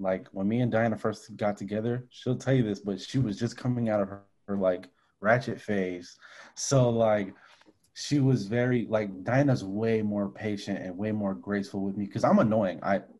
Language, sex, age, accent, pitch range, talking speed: English, male, 20-39, American, 100-120 Hz, 200 wpm